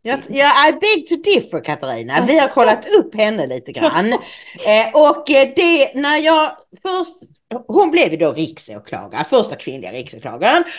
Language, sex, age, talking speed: English, female, 40-59, 145 wpm